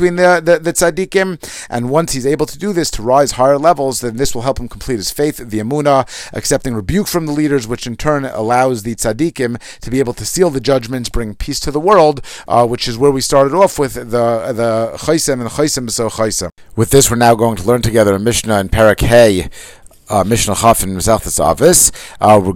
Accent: American